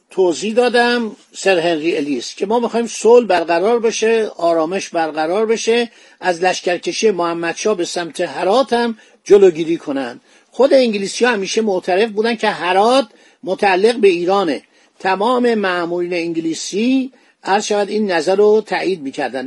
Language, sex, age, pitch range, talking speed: Persian, male, 50-69, 170-230 Hz, 135 wpm